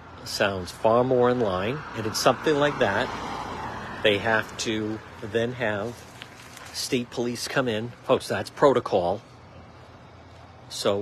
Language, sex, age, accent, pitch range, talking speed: English, male, 50-69, American, 100-120 Hz, 135 wpm